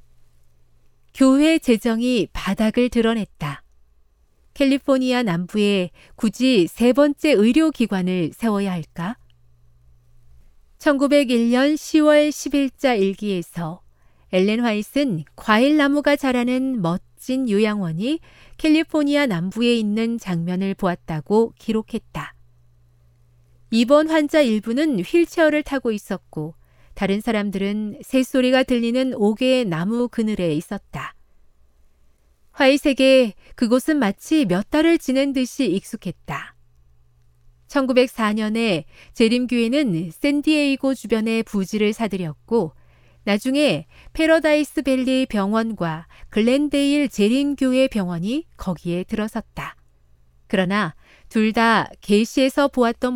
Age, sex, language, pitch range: 40-59, female, Korean, 170-265 Hz